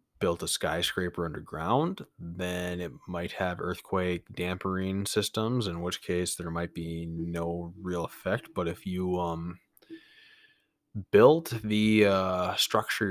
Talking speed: 130 wpm